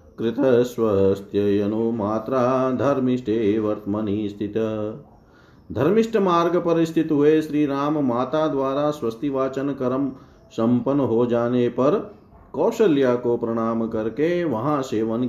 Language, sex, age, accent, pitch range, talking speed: Hindi, male, 40-59, native, 115-155 Hz, 100 wpm